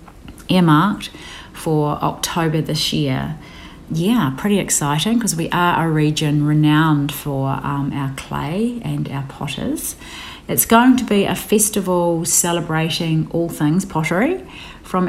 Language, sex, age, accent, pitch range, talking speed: English, female, 40-59, Australian, 150-185 Hz, 125 wpm